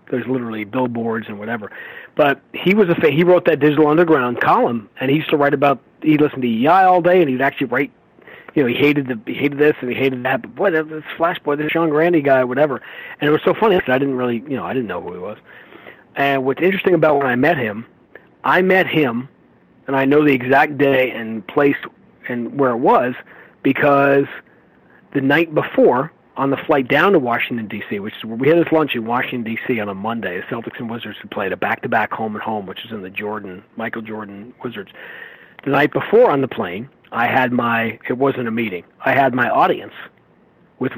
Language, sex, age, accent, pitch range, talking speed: English, male, 40-59, American, 115-150 Hz, 225 wpm